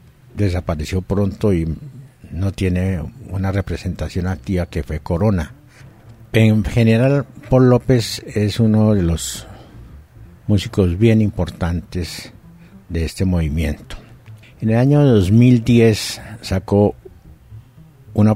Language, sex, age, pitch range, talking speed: Spanish, male, 60-79, 85-110 Hz, 100 wpm